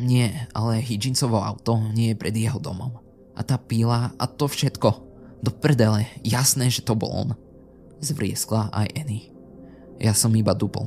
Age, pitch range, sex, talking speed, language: 20-39, 105-125 Hz, male, 160 wpm, Slovak